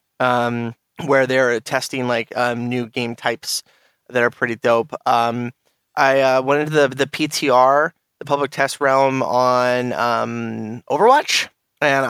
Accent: American